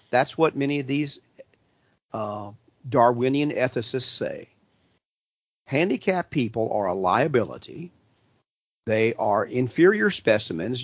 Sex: male